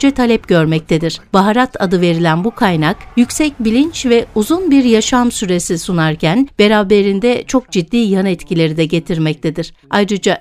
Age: 60-79